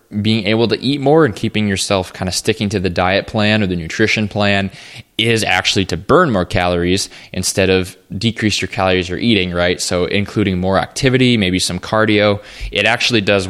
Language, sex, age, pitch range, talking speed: English, male, 20-39, 95-105 Hz, 190 wpm